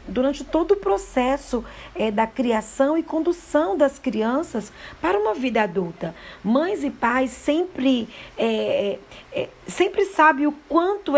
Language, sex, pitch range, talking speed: Portuguese, female, 225-300 Hz, 120 wpm